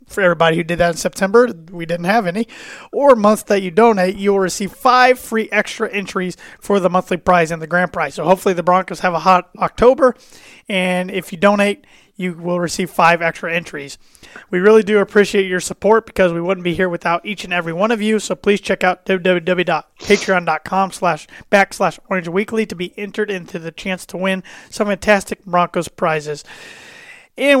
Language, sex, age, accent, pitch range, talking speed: English, male, 30-49, American, 175-205 Hz, 190 wpm